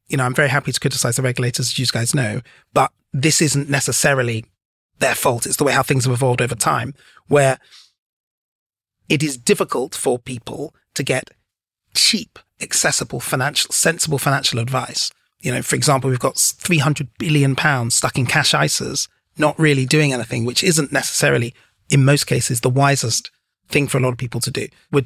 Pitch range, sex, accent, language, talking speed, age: 130-150 Hz, male, British, English, 185 wpm, 30-49